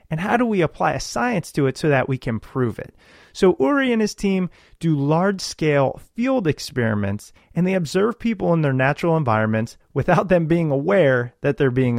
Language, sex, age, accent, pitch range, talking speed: English, male, 30-49, American, 135-195 Hz, 195 wpm